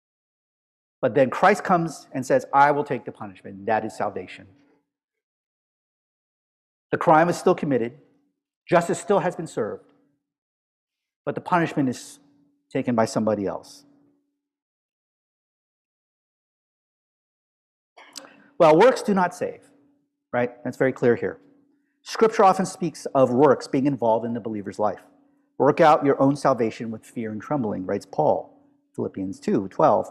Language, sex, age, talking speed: English, male, 50-69, 135 wpm